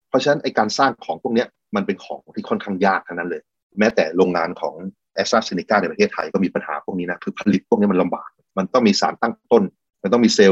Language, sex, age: Thai, male, 30-49